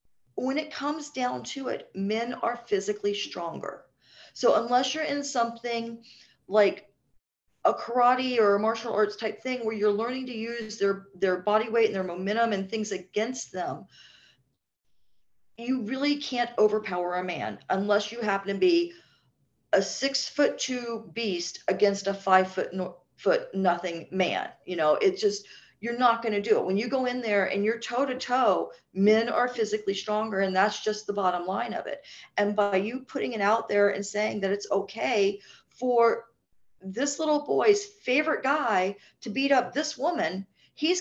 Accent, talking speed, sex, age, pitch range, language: American, 175 wpm, female, 40-59, 205-260 Hz, English